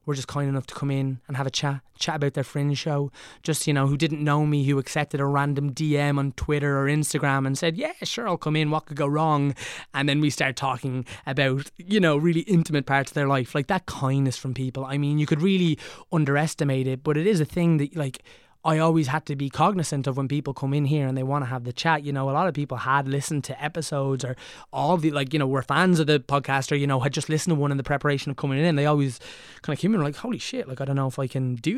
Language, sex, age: English, male, 20-39